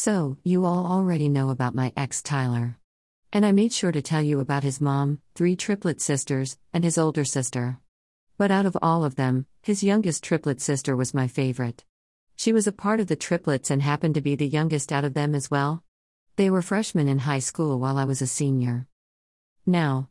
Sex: female